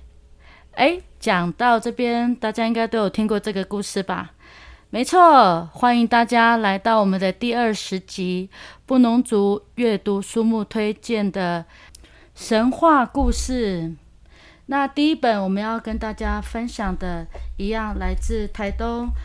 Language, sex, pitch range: Chinese, female, 195-240 Hz